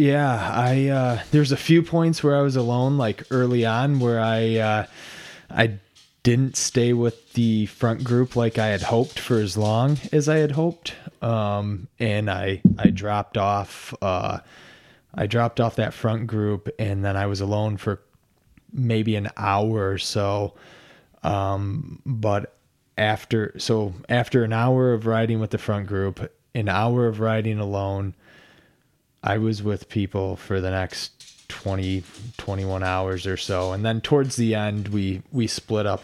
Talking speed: 165 wpm